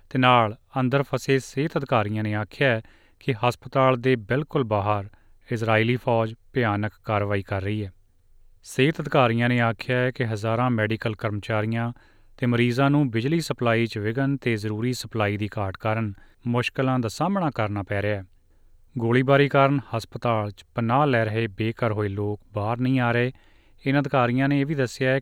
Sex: male